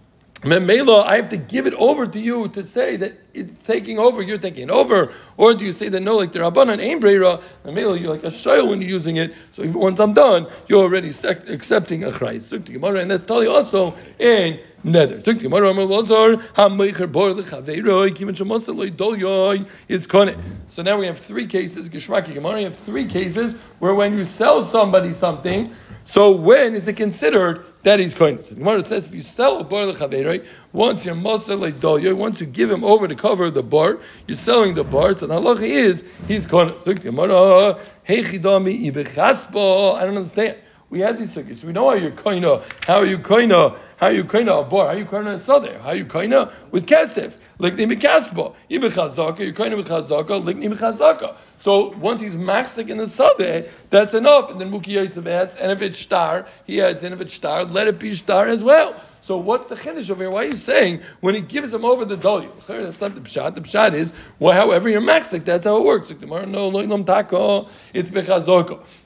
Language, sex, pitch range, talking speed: English, male, 180-215 Hz, 180 wpm